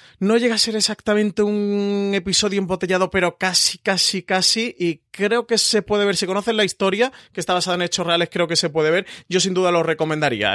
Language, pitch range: Spanish, 140-170 Hz